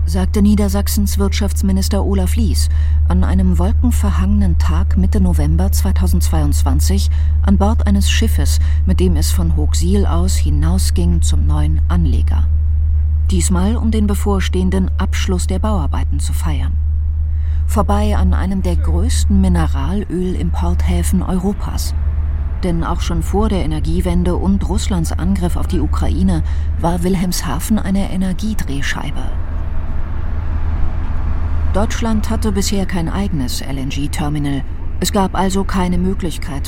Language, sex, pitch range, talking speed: German, female, 75-85 Hz, 115 wpm